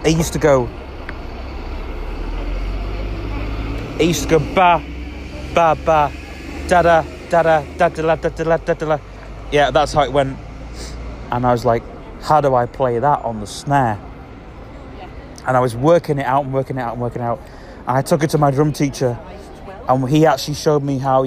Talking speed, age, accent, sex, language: 170 wpm, 30-49, British, male, English